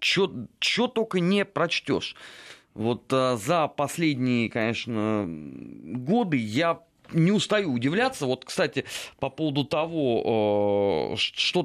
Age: 30-49